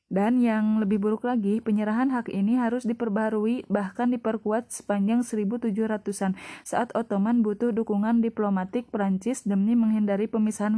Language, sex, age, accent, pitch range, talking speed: Indonesian, female, 20-39, native, 210-230 Hz, 130 wpm